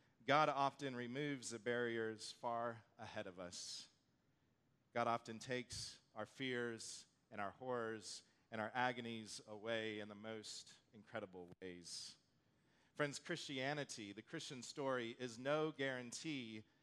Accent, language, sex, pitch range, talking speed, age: American, English, male, 105-140 Hz, 120 wpm, 40-59